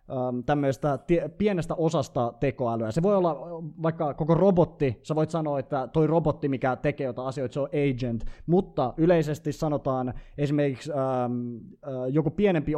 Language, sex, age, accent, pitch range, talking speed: Finnish, male, 20-39, native, 125-155 Hz, 135 wpm